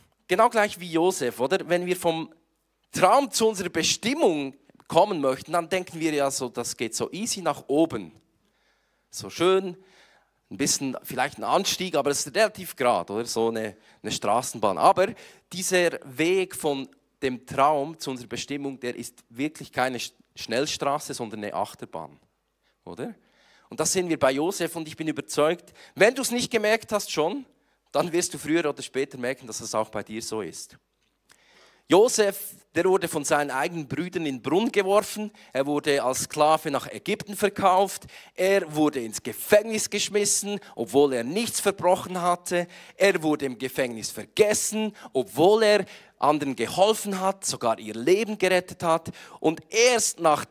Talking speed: 165 wpm